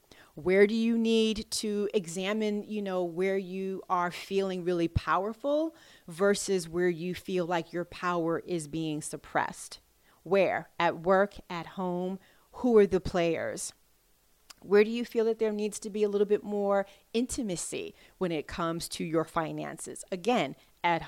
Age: 30-49